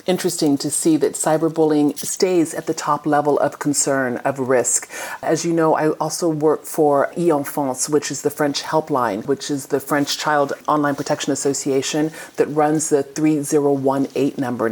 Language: English